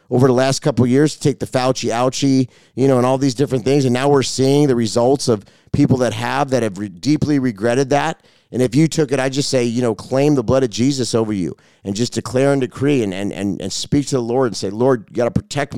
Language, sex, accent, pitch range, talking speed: English, male, American, 115-140 Hz, 265 wpm